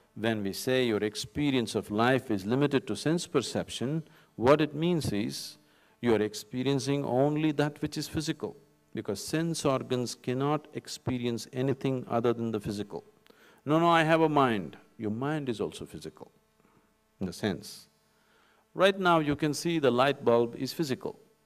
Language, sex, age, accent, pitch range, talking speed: English, male, 50-69, Indian, 110-155 Hz, 160 wpm